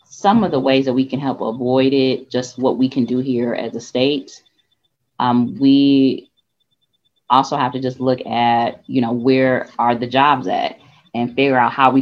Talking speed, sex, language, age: 195 wpm, female, English, 20-39